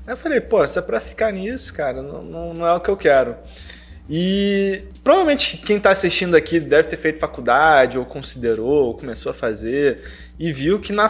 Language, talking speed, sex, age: Portuguese, 205 wpm, male, 20-39